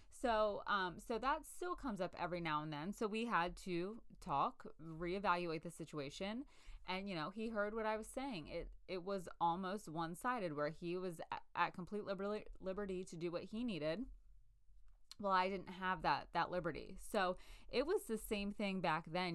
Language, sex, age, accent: English, female, 20-39, American